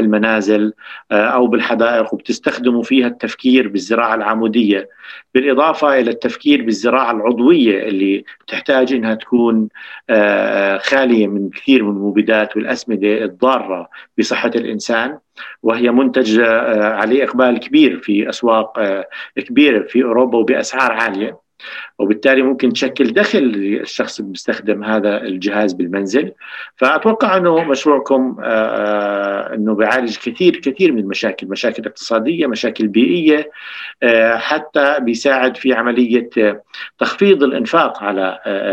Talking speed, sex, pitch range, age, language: 105 wpm, male, 105-130 Hz, 50-69, Arabic